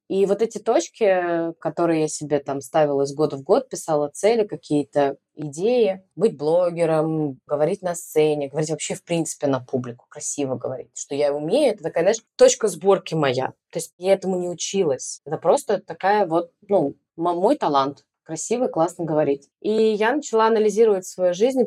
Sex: female